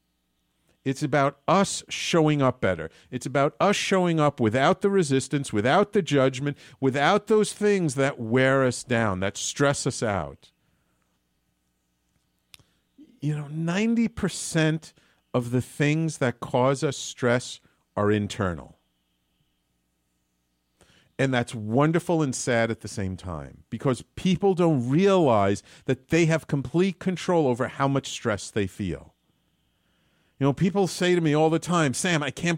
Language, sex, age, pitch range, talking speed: English, male, 50-69, 110-155 Hz, 140 wpm